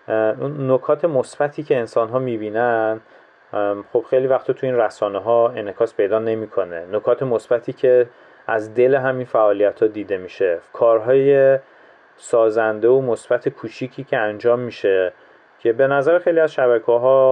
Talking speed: 140 wpm